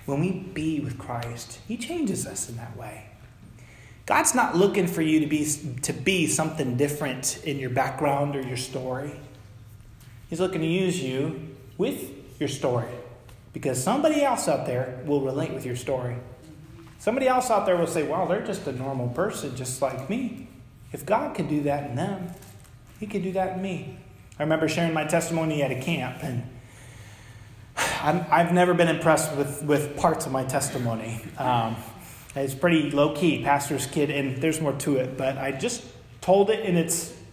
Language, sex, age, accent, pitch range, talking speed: English, male, 30-49, American, 125-165 Hz, 180 wpm